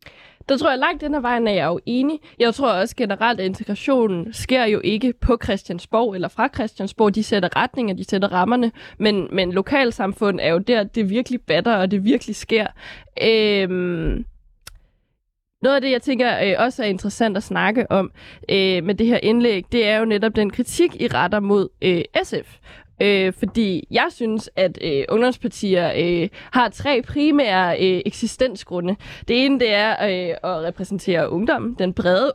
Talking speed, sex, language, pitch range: 180 wpm, female, Danish, 190-240 Hz